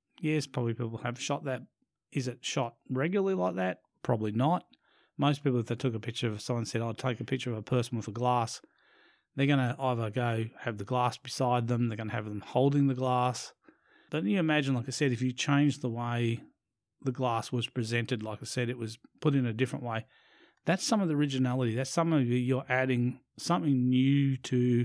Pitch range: 120-135 Hz